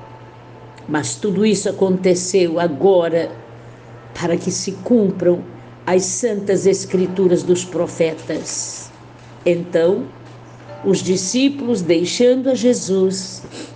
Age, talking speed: 60-79, 85 wpm